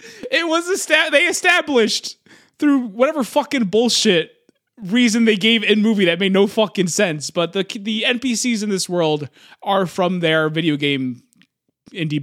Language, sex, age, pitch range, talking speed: English, male, 20-39, 160-220 Hz, 155 wpm